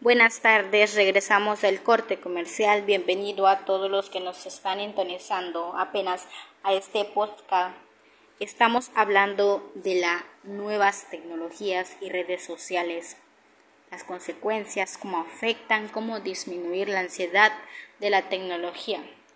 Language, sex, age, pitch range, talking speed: Spanish, female, 20-39, 185-210 Hz, 120 wpm